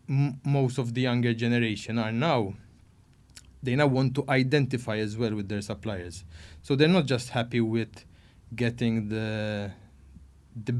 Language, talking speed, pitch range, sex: English, 145 wpm, 115-140 Hz, male